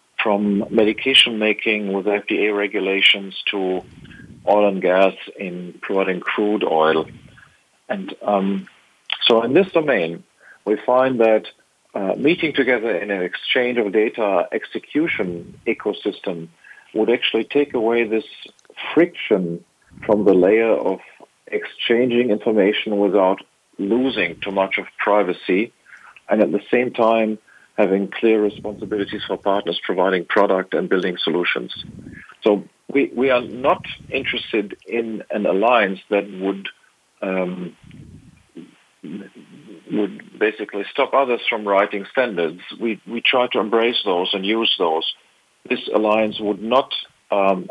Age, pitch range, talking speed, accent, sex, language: 50-69, 95-115 Hz, 125 wpm, German, male, English